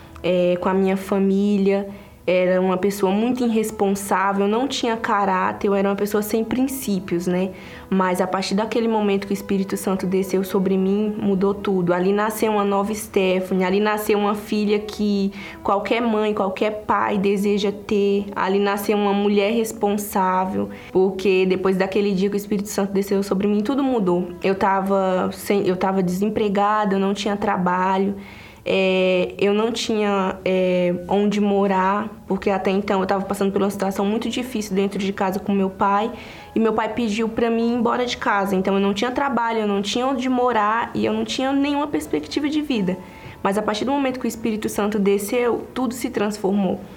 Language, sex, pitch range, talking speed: Portuguese, female, 195-215 Hz, 185 wpm